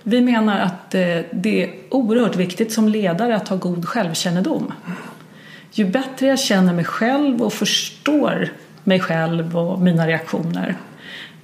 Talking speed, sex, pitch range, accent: 135 wpm, female, 170-210 Hz, native